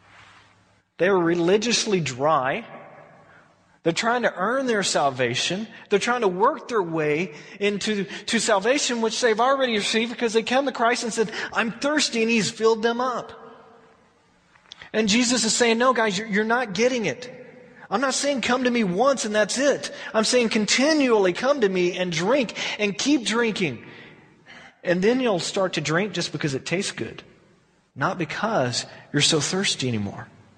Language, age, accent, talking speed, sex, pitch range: English, 30-49, American, 170 wpm, male, 145-225 Hz